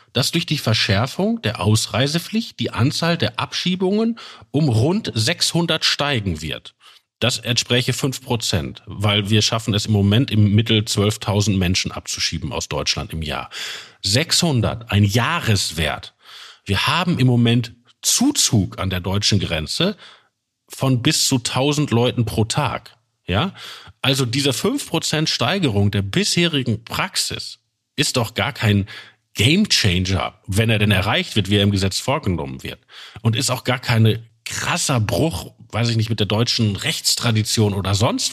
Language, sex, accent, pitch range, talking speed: German, male, German, 105-135 Hz, 145 wpm